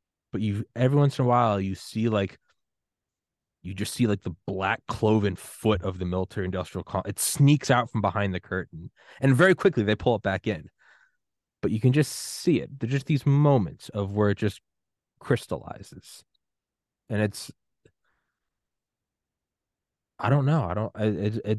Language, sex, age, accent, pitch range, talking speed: English, male, 20-39, American, 95-115 Hz, 165 wpm